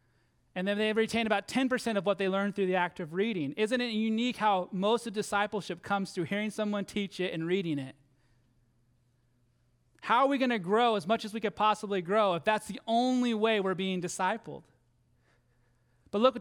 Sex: male